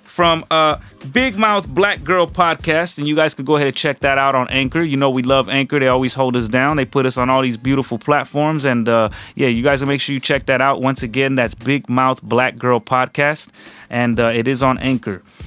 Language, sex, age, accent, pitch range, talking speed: English, male, 20-39, American, 120-140 Hz, 240 wpm